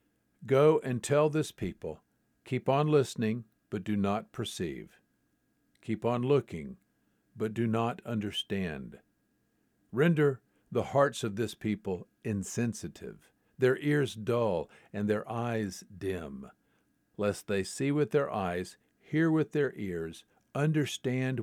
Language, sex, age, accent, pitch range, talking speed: English, male, 50-69, American, 100-125 Hz, 125 wpm